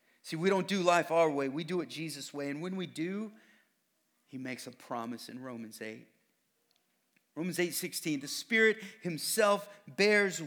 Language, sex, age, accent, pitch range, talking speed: English, male, 40-59, American, 130-195 Hz, 170 wpm